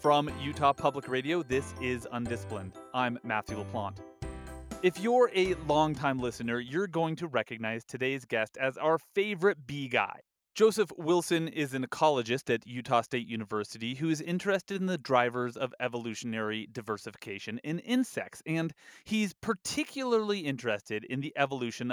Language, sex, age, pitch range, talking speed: English, male, 30-49, 120-170 Hz, 145 wpm